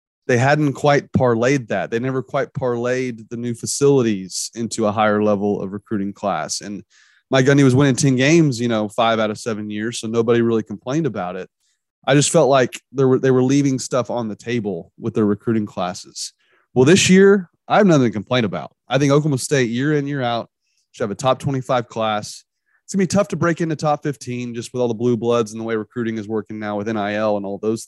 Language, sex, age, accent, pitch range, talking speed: English, male, 30-49, American, 115-145 Hz, 230 wpm